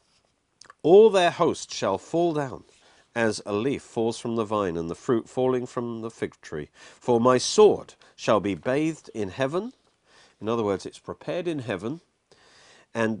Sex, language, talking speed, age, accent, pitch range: male, English, 170 wpm, 50-69, British, 105-160 Hz